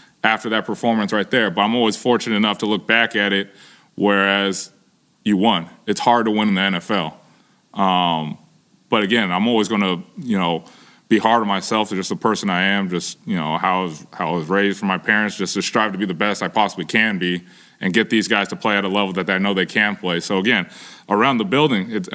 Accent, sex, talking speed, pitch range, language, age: American, male, 240 wpm, 100-115 Hz, English, 20-39